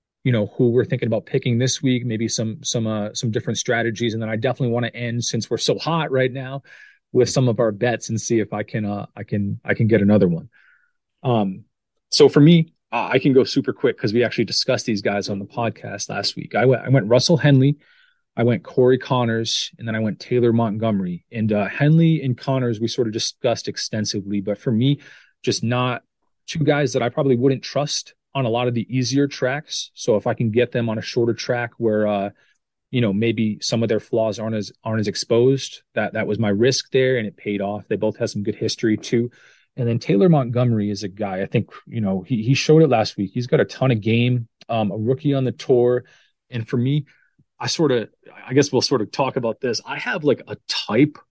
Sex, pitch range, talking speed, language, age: male, 110-135 Hz, 235 wpm, English, 30-49